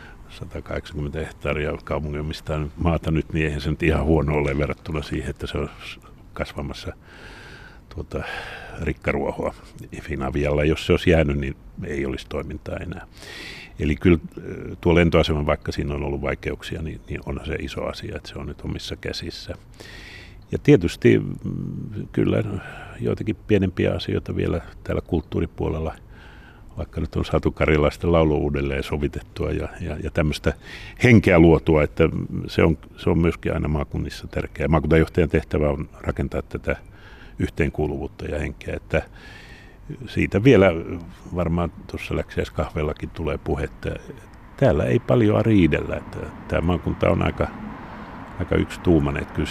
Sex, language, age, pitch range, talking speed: male, Finnish, 60-79, 75-90 Hz, 135 wpm